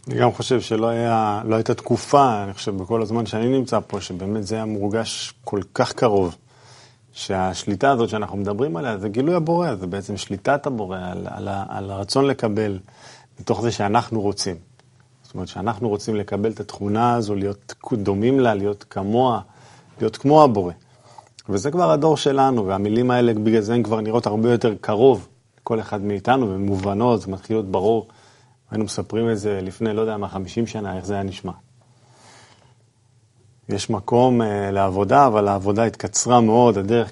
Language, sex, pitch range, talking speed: Hebrew, male, 100-125 Hz, 160 wpm